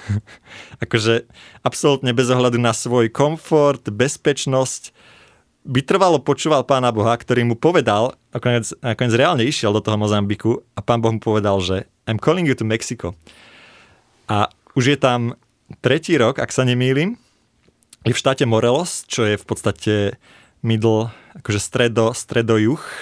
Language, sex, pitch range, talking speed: Slovak, male, 110-130 Hz, 140 wpm